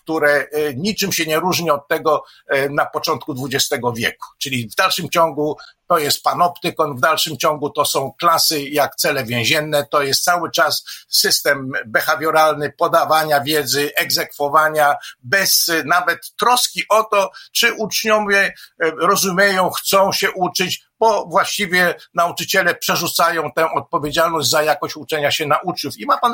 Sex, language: male, Polish